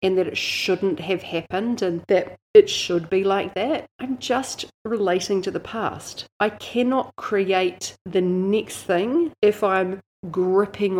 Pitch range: 185-235 Hz